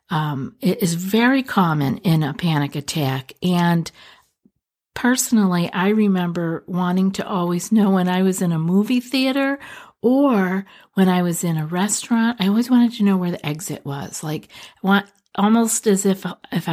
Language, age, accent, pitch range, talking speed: English, 50-69, American, 165-210 Hz, 165 wpm